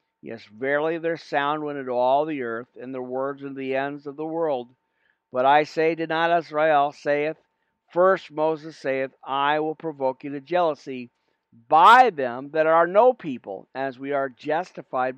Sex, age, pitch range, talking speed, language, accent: male, 50-69, 130-165 Hz, 175 wpm, English, American